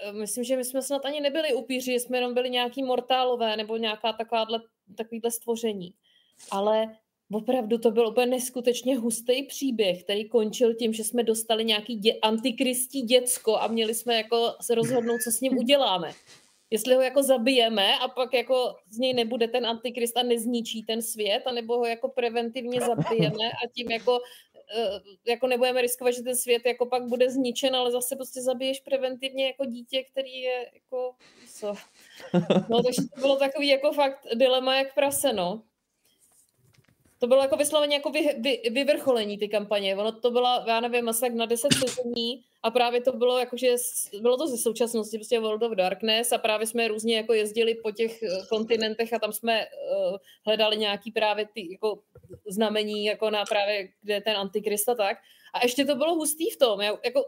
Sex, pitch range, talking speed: female, 225-260 Hz, 175 wpm